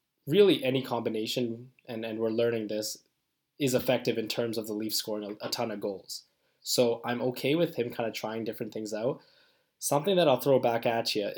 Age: 10-29